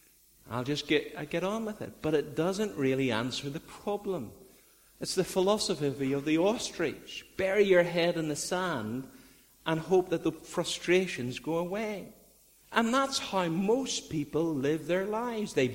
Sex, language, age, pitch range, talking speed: male, English, 50-69, 125-185 Hz, 165 wpm